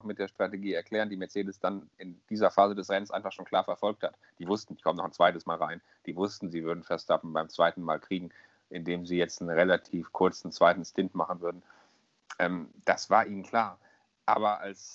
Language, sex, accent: German, male, German